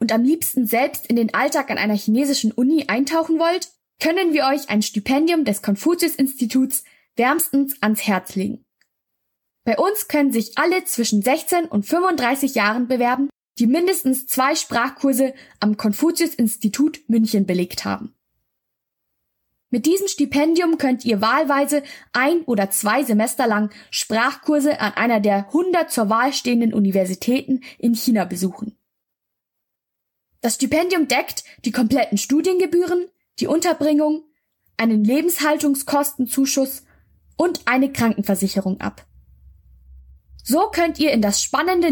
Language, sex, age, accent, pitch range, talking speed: German, female, 20-39, German, 220-305 Hz, 125 wpm